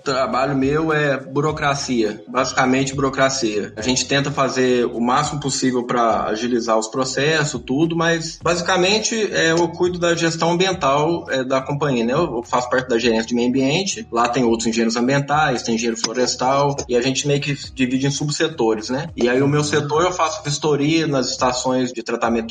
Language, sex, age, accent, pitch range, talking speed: Portuguese, male, 20-39, Brazilian, 120-150 Hz, 180 wpm